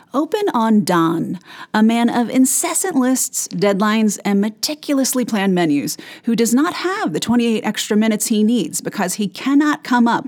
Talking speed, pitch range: 165 wpm, 185-255 Hz